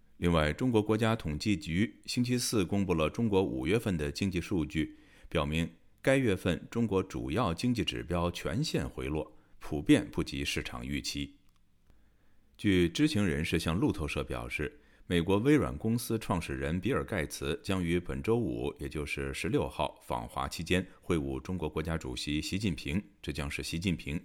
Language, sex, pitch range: Chinese, male, 75-105 Hz